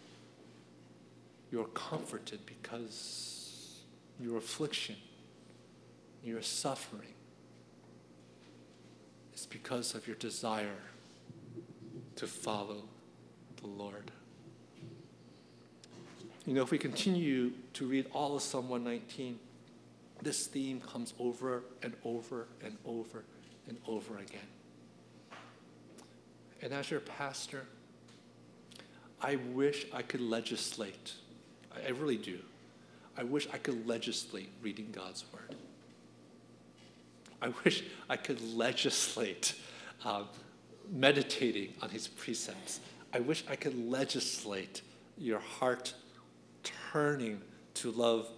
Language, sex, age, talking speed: English, male, 50-69, 95 wpm